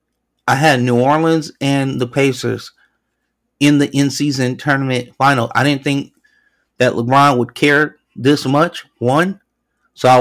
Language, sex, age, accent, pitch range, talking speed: English, male, 30-49, American, 125-155 Hz, 140 wpm